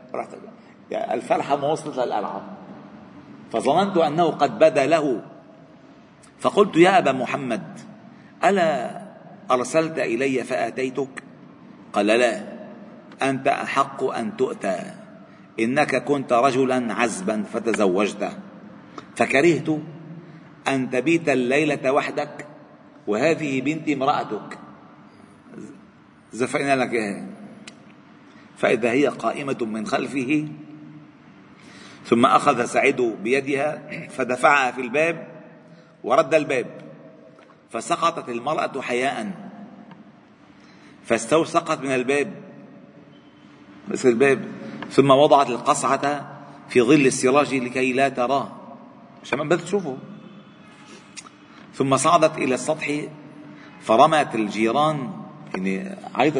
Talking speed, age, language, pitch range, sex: 85 wpm, 50-69, Arabic, 130-165 Hz, male